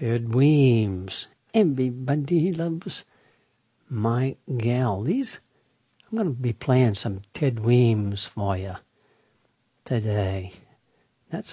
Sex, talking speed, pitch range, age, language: male, 100 wpm, 110-145 Hz, 60-79, English